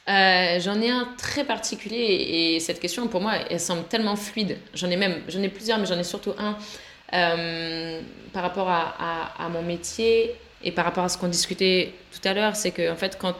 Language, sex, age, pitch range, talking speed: French, female, 20-39, 180-235 Hz, 200 wpm